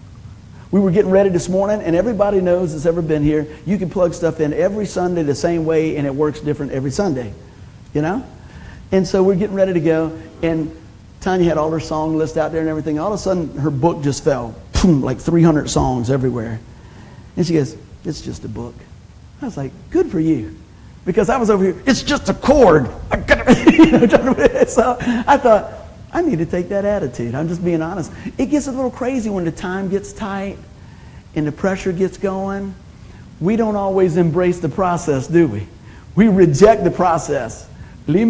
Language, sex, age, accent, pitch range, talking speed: English, male, 50-69, American, 150-205 Hz, 195 wpm